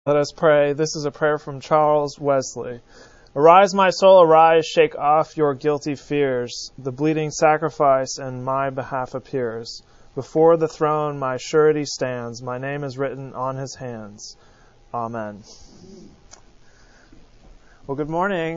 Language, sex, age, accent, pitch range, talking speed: English, male, 30-49, American, 130-155 Hz, 140 wpm